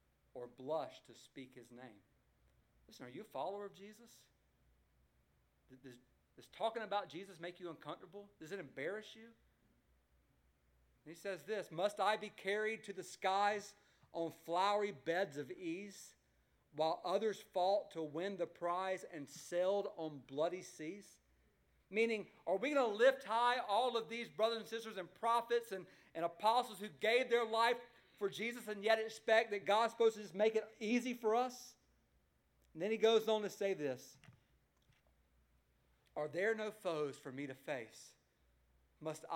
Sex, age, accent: male, 40-59, American